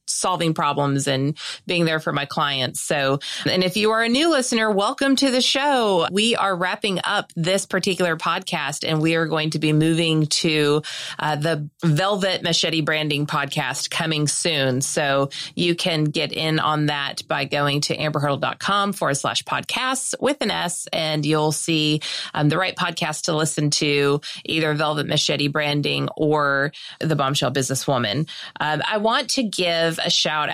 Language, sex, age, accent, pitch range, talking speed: English, female, 30-49, American, 145-180 Hz, 165 wpm